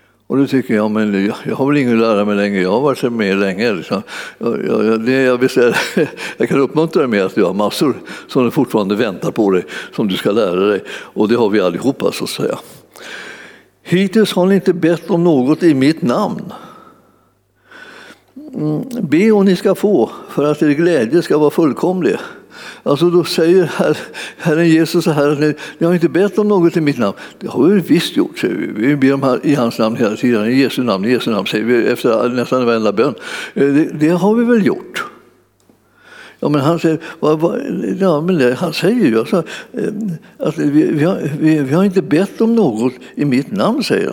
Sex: male